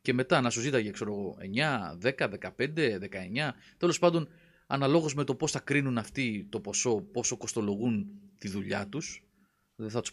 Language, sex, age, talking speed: Greek, male, 30-49, 170 wpm